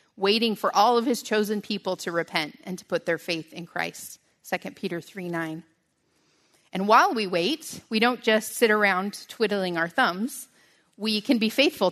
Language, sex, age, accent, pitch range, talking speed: English, female, 30-49, American, 180-225 Hz, 180 wpm